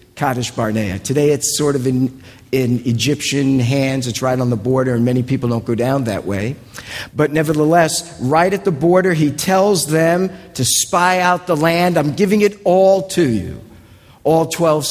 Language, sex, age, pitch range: English, male, 50-69, 120-160 Hz